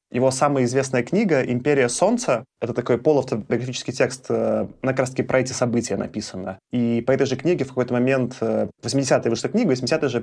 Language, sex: Russian, male